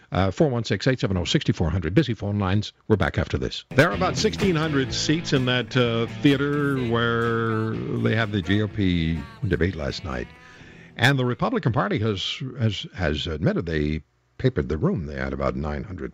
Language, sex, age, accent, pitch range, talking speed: English, male, 60-79, American, 100-155 Hz, 150 wpm